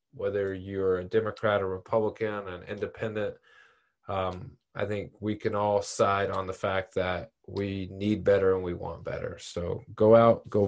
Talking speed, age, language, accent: 170 wpm, 20-39, English, American